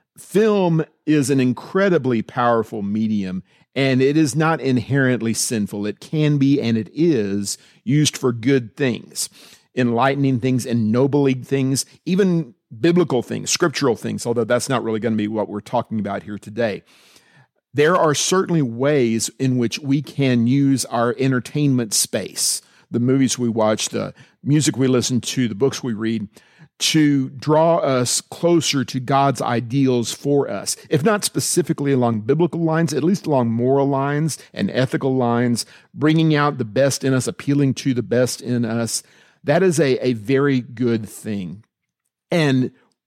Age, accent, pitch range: 50-69, American, 120-145 Hz